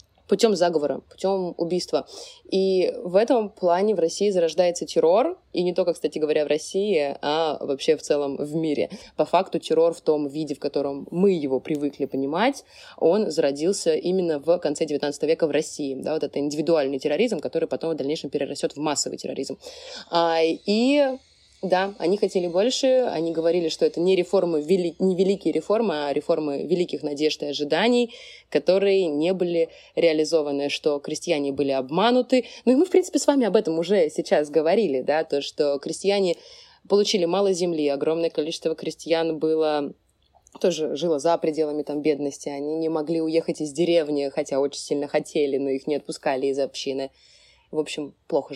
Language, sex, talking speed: Russian, female, 170 wpm